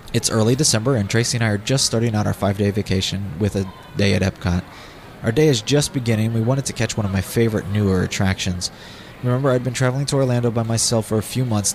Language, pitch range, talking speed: English, 100-135 Hz, 235 wpm